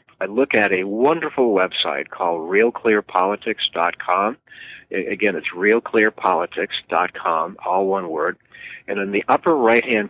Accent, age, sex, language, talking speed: American, 50-69, male, English, 115 wpm